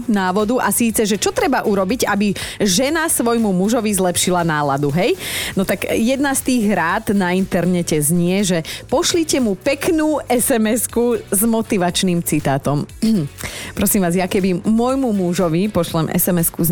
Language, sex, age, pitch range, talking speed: Slovak, female, 30-49, 165-215 Hz, 145 wpm